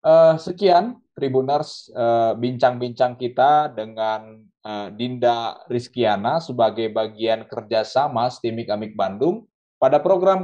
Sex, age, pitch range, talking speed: male, 20-39, 110-140 Hz, 85 wpm